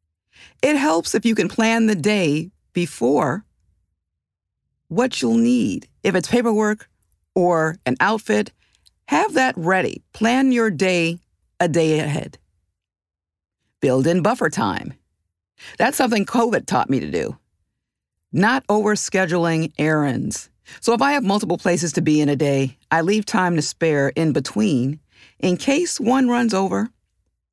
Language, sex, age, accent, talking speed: English, female, 50-69, American, 140 wpm